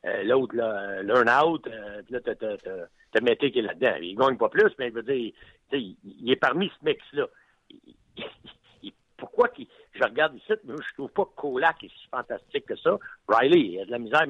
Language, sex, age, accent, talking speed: French, male, 60-79, French, 195 wpm